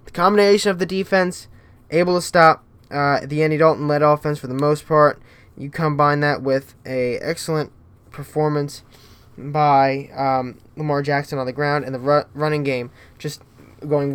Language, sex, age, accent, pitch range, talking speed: English, male, 10-29, American, 130-150 Hz, 155 wpm